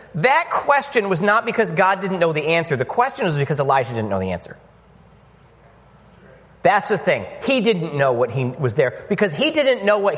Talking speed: 200 wpm